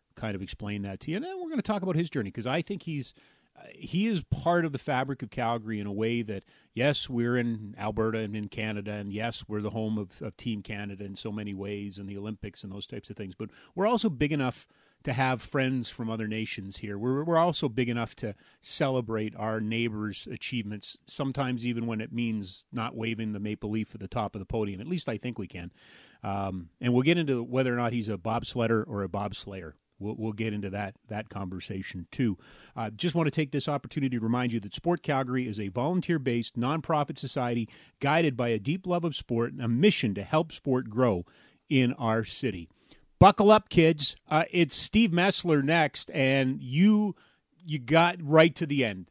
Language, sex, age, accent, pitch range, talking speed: English, male, 30-49, American, 105-150 Hz, 215 wpm